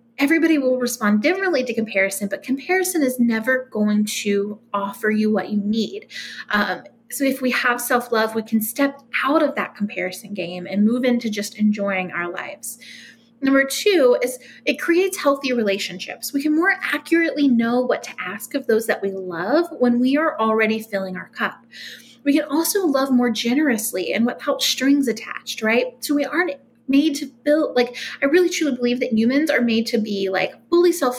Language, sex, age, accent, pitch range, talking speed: English, female, 30-49, American, 220-280 Hz, 185 wpm